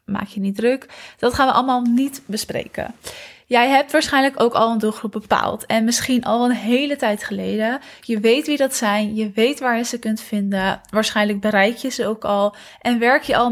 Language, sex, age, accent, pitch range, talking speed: Dutch, female, 20-39, Dutch, 210-245 Hz, 210 wpm